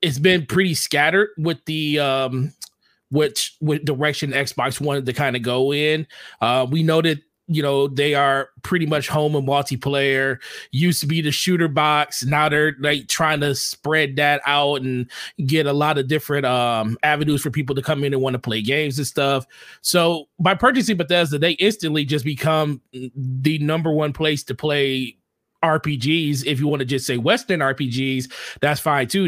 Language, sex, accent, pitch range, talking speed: English, male, American, 135-165 Hz, 185 wpm